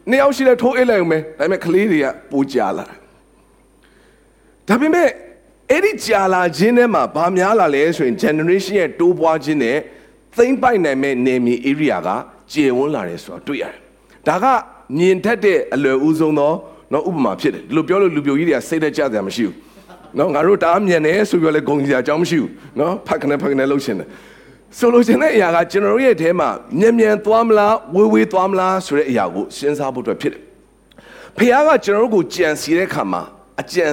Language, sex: English, male